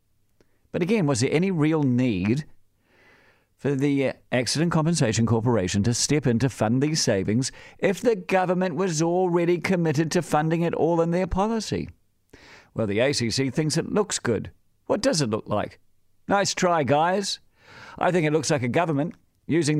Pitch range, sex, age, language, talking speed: 115-165 Hz, male, 50-69, English, 165 wpm